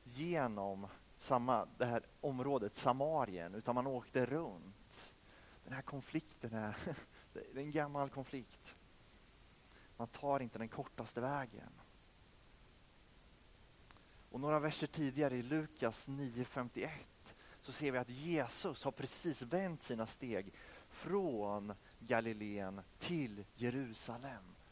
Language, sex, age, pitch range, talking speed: Swedish, male, 30-49, 105-150 Hz, 110 wpm